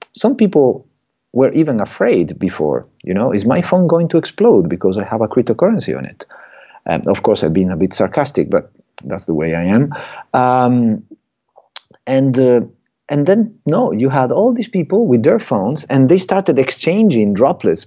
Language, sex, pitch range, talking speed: English, male, 110-150 Hz, 180 wpm